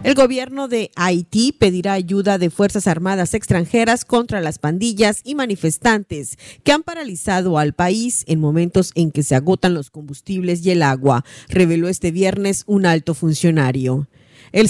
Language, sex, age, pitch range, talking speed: Spanish, female, 40-59, 155-210 Hz, 155 wpm